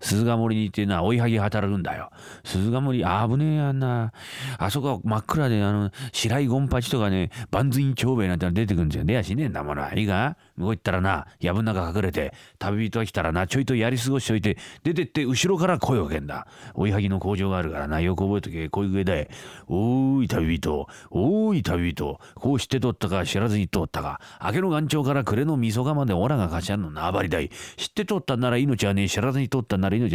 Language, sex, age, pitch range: Japanese, male, 40-59, 95-130 Hz